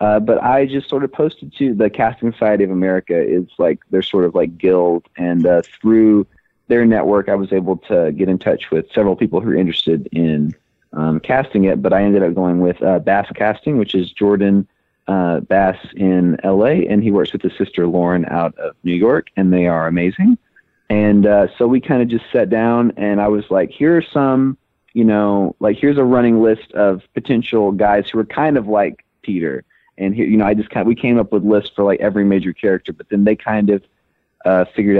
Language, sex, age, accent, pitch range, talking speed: English, male, 30-49, American, 90-110 Hz, 225 wpm